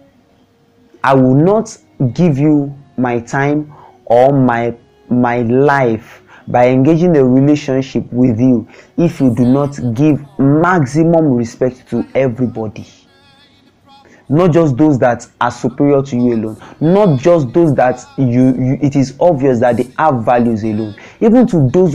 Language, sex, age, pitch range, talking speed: English, male, 30-49, 120-150 Hz, 140 wpm